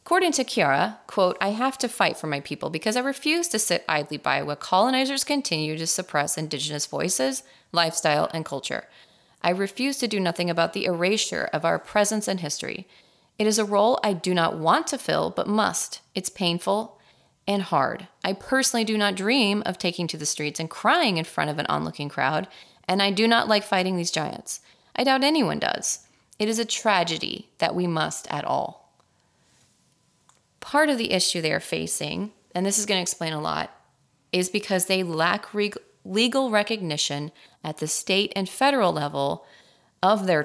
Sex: female